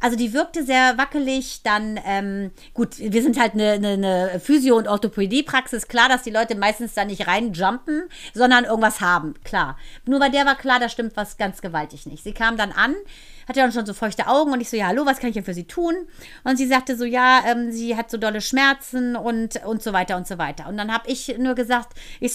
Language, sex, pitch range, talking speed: German, female, 220-255 Hz, 230 wpm